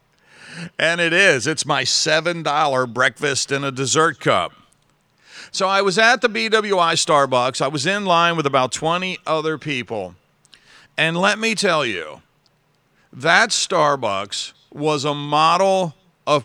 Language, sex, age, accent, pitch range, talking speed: English, male, 40-59, American, 140-170 Hz, 140 wpm